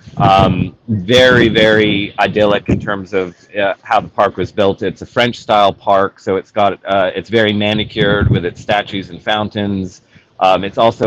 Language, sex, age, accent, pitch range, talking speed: English, male, 30-49, American, 95-110 Hz, 180 wpm